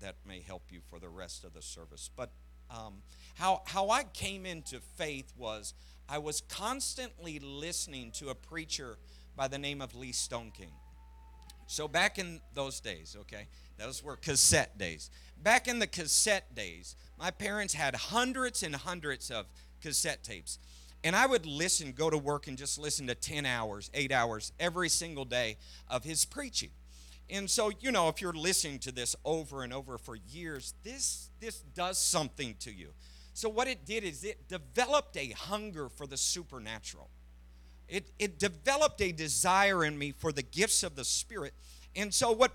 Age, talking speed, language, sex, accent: 50-69, 175 wpm, English, male, American